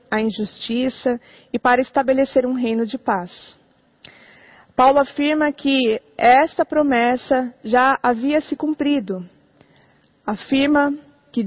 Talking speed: 105 wpm